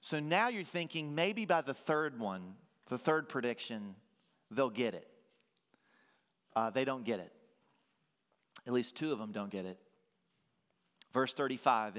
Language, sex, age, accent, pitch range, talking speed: English, male, 40-59, American, 115-160 Hz, 150 wpm